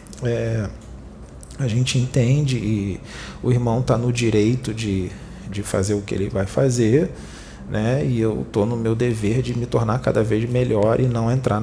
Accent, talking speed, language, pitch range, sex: Brazilian, 170 wpm, Portuguese, 100-125 Hz, male